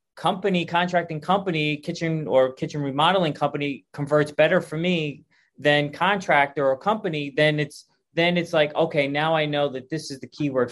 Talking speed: 170 wpm